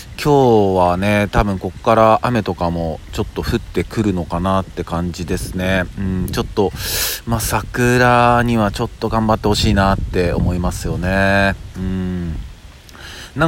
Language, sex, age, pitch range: Japanese, male, 40-59, 85-115 Hz